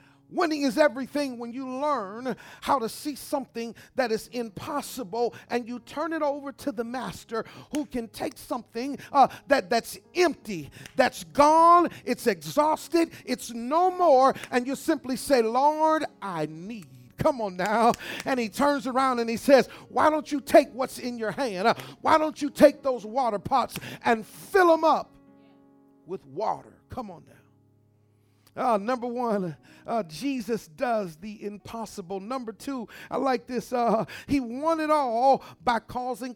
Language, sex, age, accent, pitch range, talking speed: English, male, 40-59, American, 220-275 Hz, 160 wpm